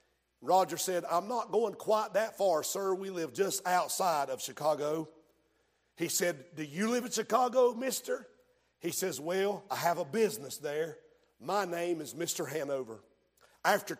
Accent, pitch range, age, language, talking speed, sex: American, 160-215 Hz, 50-69, English, 160 wpm, male